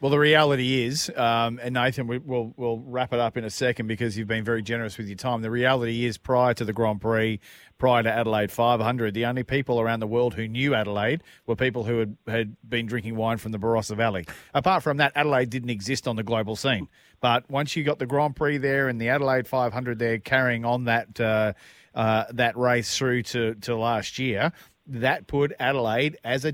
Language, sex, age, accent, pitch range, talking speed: English, male, 40-59, Australian, 110-130 Hz, 220 wpm